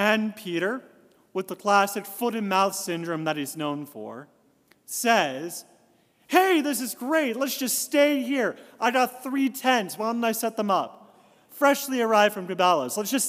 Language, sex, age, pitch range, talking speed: English, male, 40-59, 185-240 Hz, 170 wpm